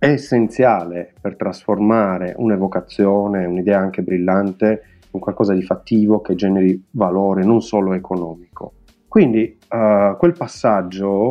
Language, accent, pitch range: Italian, native, 95-110 Hz